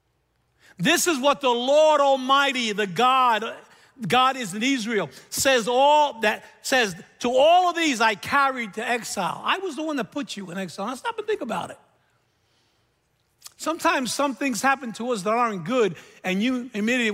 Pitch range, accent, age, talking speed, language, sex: 195-280 Hz, American, 60-79, 180 wpm, English, male